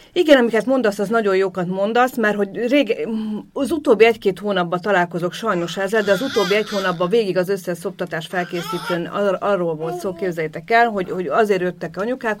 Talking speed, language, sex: 190 wpm, Hungarian, female